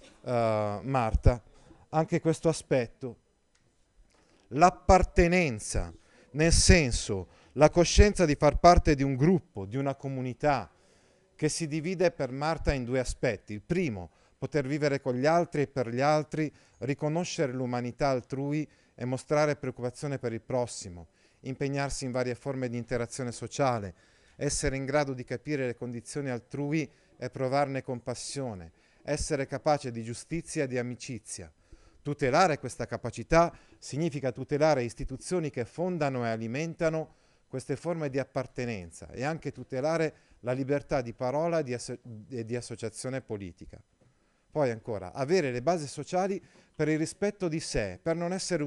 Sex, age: male, 40-59